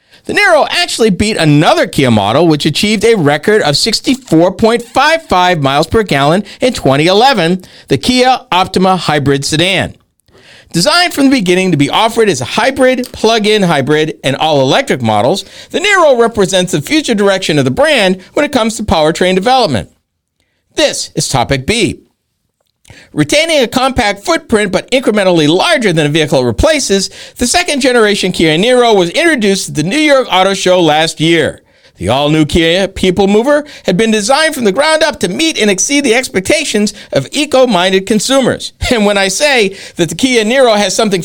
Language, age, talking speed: English, 50-69, 170 wpm